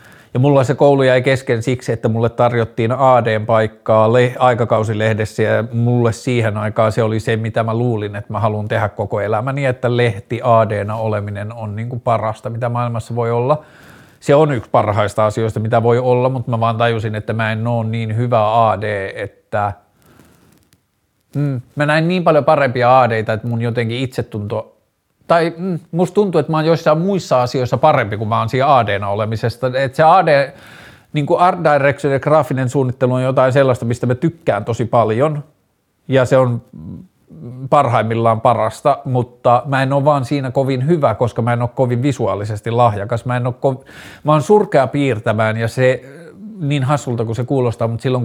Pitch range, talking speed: 110-135 Hz, 175 wpm